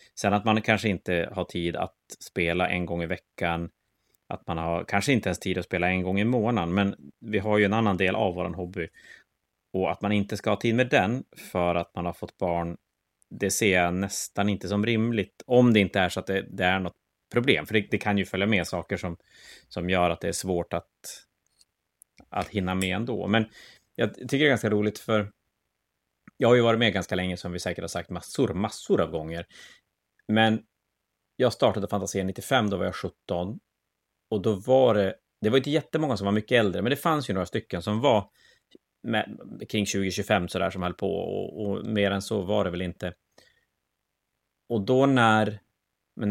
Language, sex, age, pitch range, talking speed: Swedish, male, 30-49, 90-110 Hz, 215 wpm